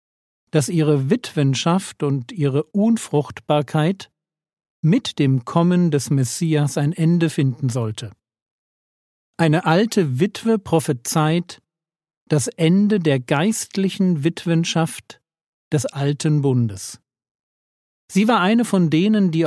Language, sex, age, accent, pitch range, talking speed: German, male, 50-69, German, 135-180 Hz, 100 wpm